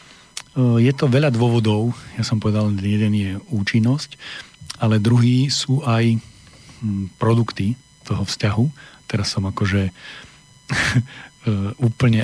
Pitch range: 105-125 Hz